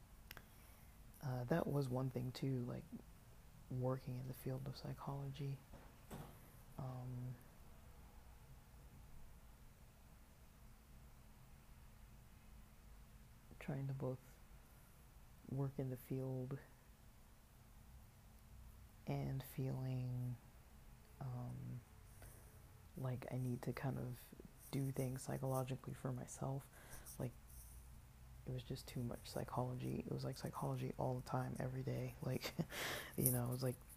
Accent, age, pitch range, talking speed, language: American, 30-49, 120-140 Hz, 100 wpm, English